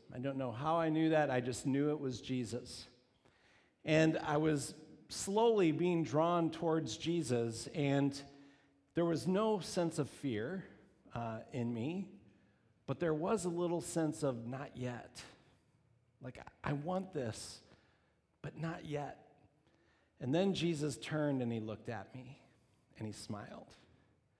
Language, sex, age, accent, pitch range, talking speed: English, male, 50-69, American, 120-155 Hz, 150 wpm